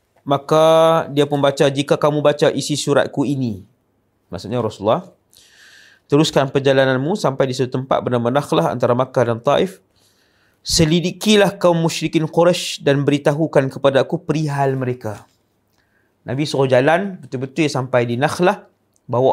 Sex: male